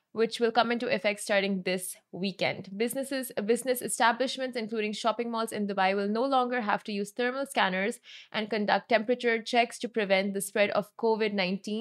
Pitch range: 205-245 Hz